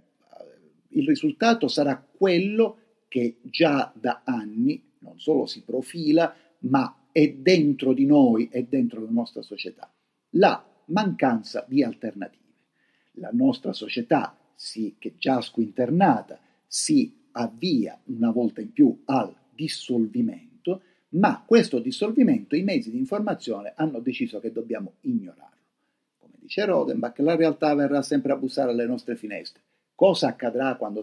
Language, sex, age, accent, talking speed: Italian, male, 50-69, native, 135 wpm